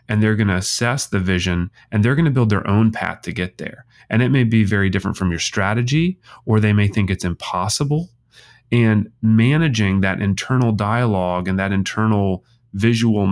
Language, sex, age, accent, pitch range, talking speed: English, male, 30-49, American, 100-130 Hz, 180 wpm